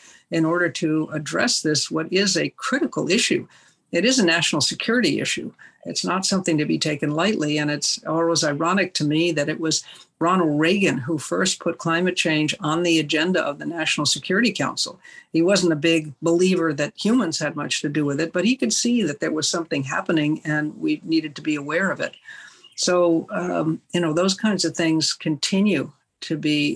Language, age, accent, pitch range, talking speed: English, 60-79, American, 150-180 Hz, 195 wpm